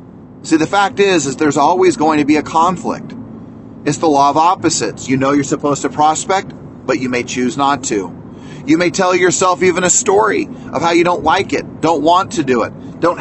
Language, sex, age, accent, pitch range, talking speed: English, male, 30-49, American, 135-190 Hz, 220 wpm